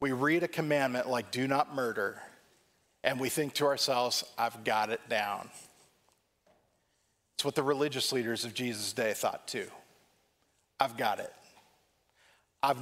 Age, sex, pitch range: 40-59, male, 115-145 Hz